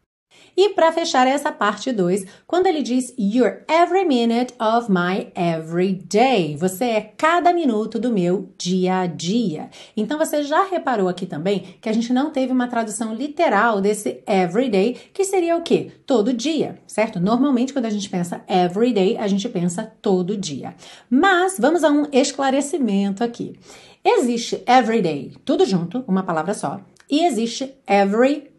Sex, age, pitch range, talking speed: female, 40-59, 195-265 Hz, 155 wpm